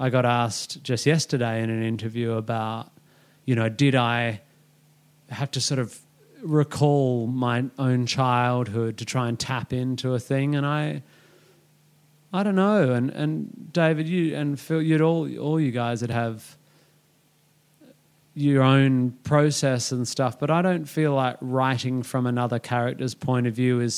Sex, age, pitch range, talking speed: male, 30-49, 125-150 Hz, 160 wpm